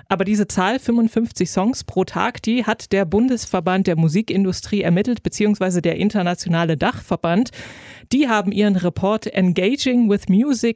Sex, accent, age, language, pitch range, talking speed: female, German, 20-39, German, 185-225 Hz, 140 wpm